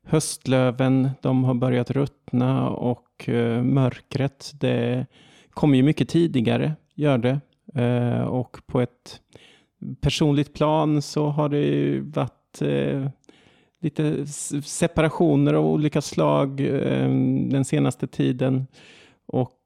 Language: Swedish